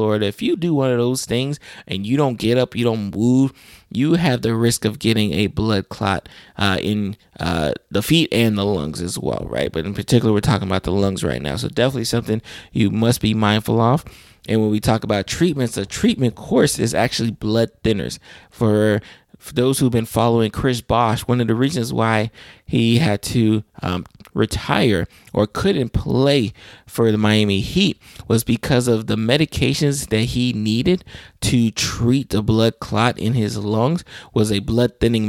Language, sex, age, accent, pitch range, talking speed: English, male, 20-39, American, 105-125 Hz, 190 wpm